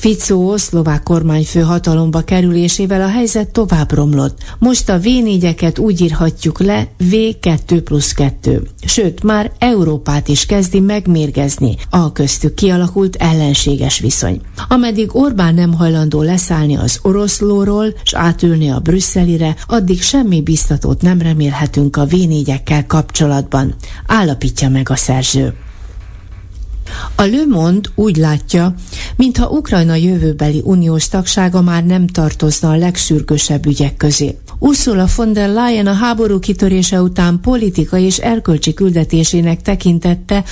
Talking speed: 120 wpm